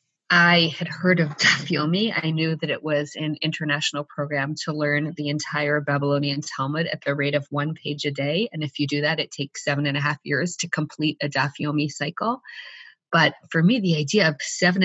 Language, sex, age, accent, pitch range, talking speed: English, female, 30-49, American, 155-185 Hz, 205 wpm